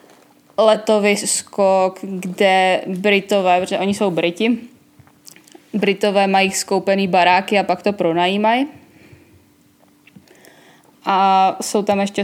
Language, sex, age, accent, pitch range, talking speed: Czech, female, 20-39, native, 180-205 Hz, 100 wpm